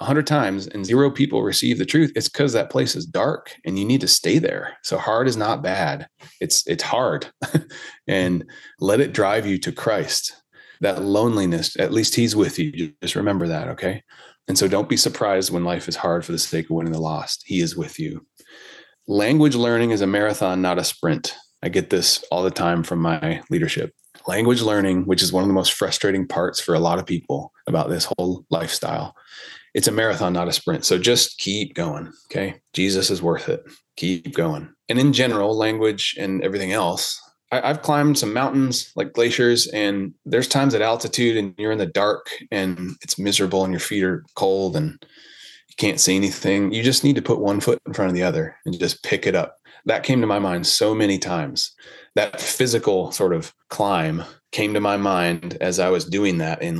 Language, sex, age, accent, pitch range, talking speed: English, male, 30-49, American, 90-120 Hz, 205 wpm